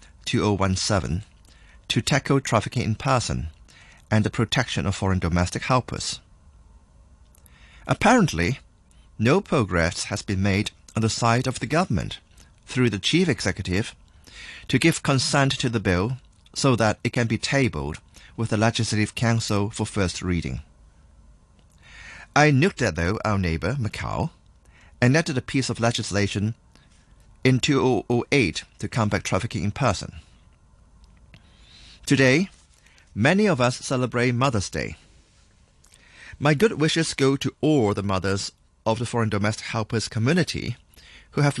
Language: English